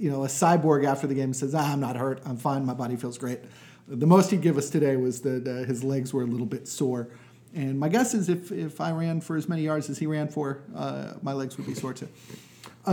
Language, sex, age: English, male, 40-59